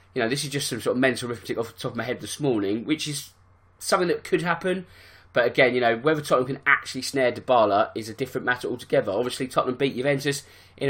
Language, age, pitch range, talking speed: English, 20-39, 125-150 Hz, 240 wpm